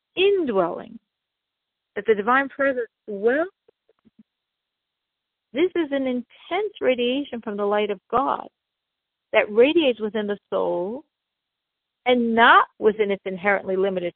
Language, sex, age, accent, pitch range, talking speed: English, female, 50-69, American, 205-295 Hz, 115 wpm